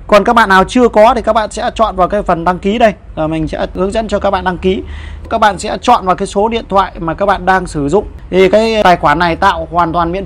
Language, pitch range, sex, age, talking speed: Vietnamese, 140-195 Hz, male, 20-39, 300 wpm